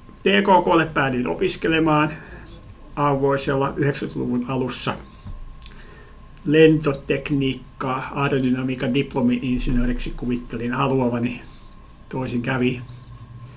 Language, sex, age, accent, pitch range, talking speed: Finnish, male, 60-79, native, 120-145 Hz, 55 wpm